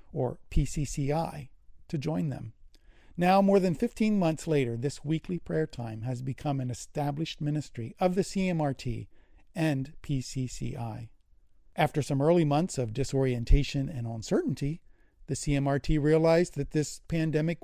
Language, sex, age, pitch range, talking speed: English, male, 50-69, 135-165 Hz, 135 wpm